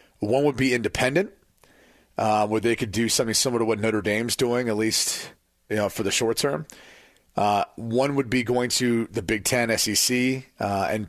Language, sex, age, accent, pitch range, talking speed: English, male, 30-49, American, 110-130 Hz, 195 wpm